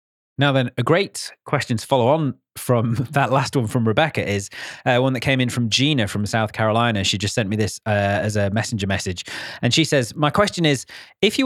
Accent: British